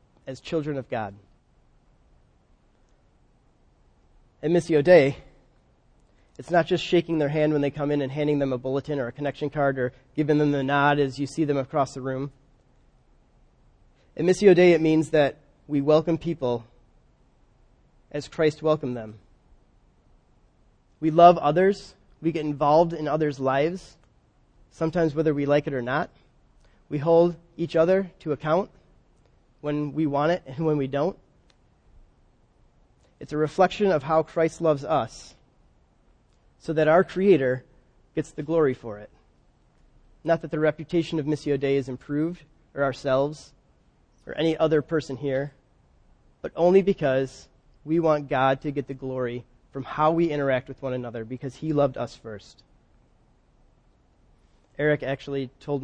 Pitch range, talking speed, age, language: 135-160 Hz, 150 wpm, 30-49, English